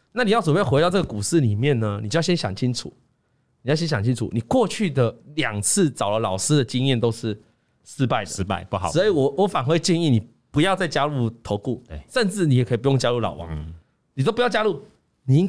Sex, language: male, Chinese